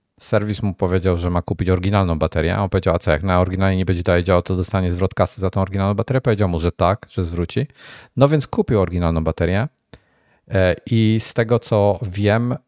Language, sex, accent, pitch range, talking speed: Polish, male, native, 85-105 Hz, 210 wpm